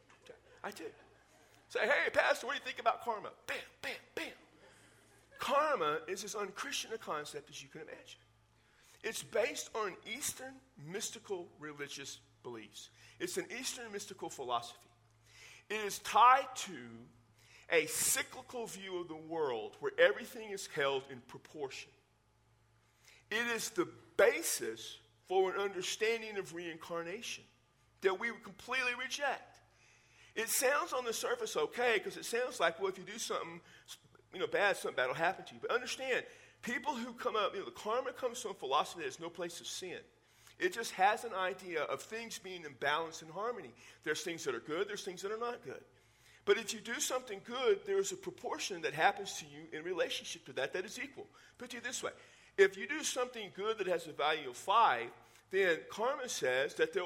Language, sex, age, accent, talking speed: English, male, 50-69, American, 180 wpm